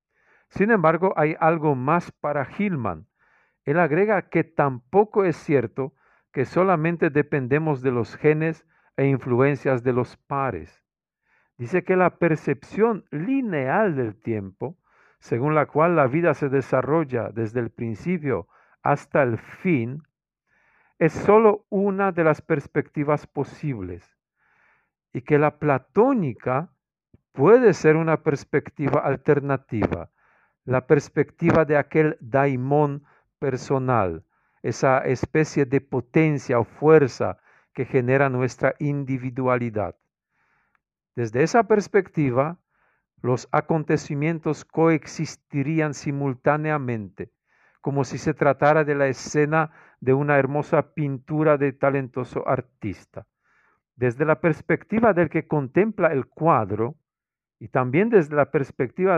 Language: Spanish